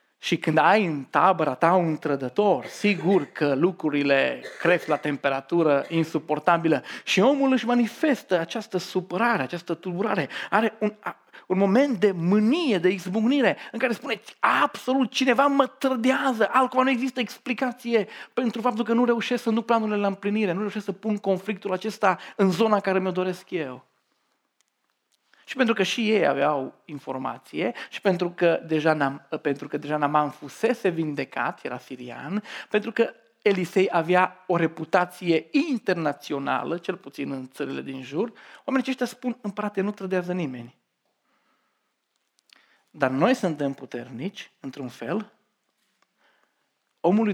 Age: 40-59